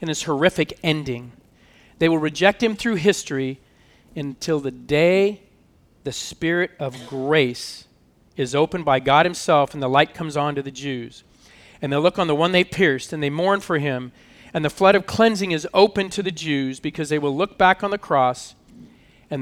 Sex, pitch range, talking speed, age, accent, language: male, 135-185 Hz, 190 wpm, 40-59, American, English